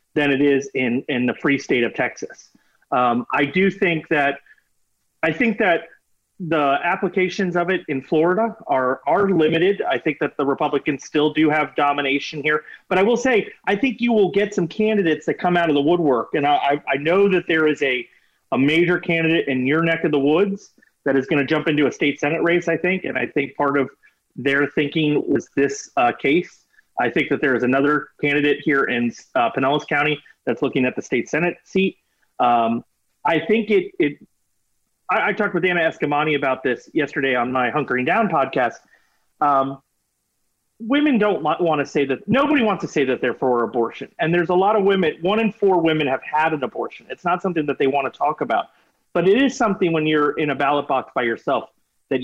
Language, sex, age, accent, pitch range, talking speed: English, male, 30-49, American, 140-180 Hz, 210 wpm